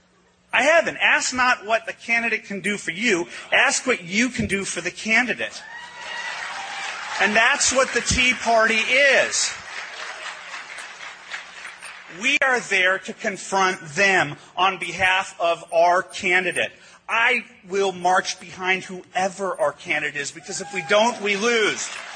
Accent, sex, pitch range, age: American, male, 185-265 Hz, 40-59